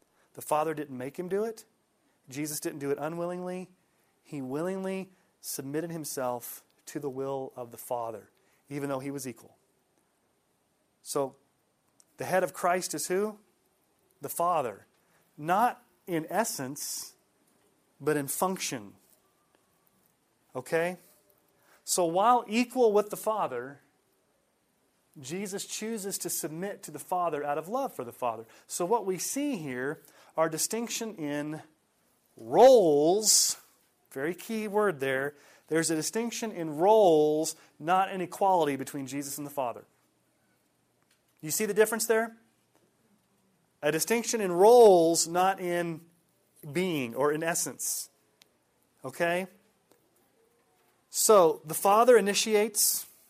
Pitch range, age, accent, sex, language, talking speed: 150-200 Hz, 30-49, American, male, English, 120 wpm